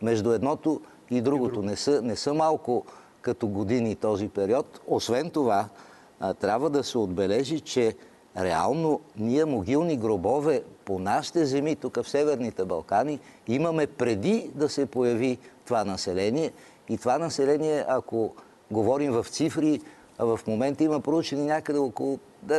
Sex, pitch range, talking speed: male, 120-150 Hz, 140 wpm